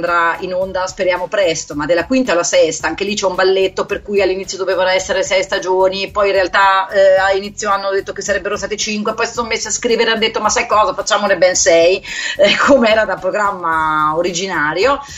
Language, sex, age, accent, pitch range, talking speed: Italian, female, 30-49, native, 170-255 Hz, 215 wpm